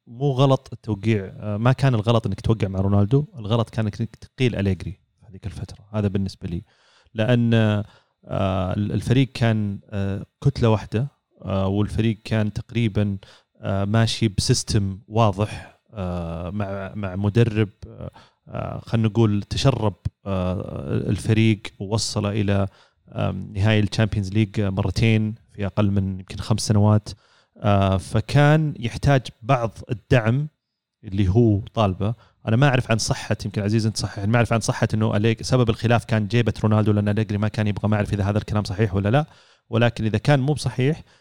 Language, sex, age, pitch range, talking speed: Arabic, male, 30-49, 100-120 Hz, 140 wpm